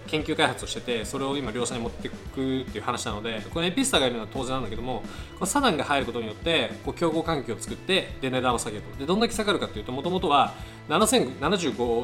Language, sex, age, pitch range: Japanese, male, 20-39, 115-150 Hz